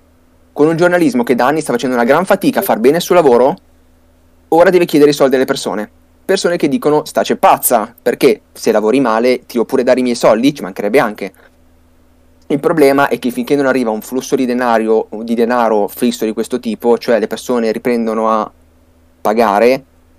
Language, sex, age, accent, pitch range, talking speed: Italian, male, 30-49, native, 110-135 Hz, 195 wpm